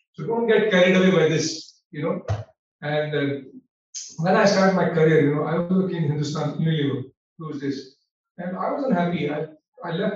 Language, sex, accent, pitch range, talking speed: Hindi, male, native, 150-190 Hz, 205 wpm